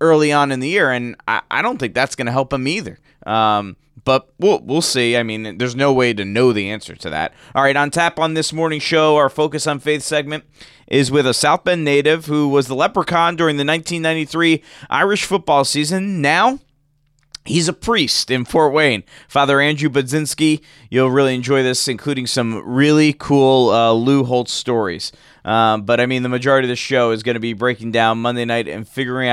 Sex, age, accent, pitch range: male, 30-49, American, 120-145 Hz